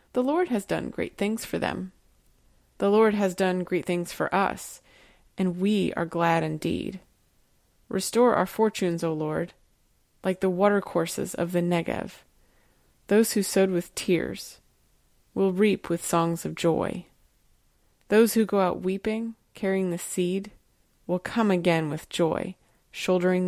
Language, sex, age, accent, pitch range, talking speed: English, female, 30-49, American, 170-195 Hz, 145 wpm